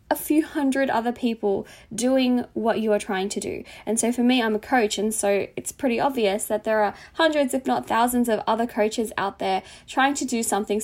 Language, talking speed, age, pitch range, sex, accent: English, 220 wpm, 10-29, 200-240 Hz, female, Australian